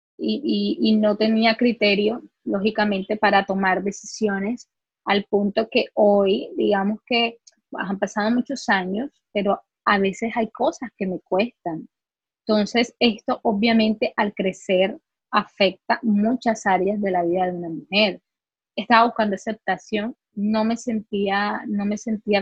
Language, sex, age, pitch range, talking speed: Spanish, female, 20-39, 195-220 Hz, 135 wpm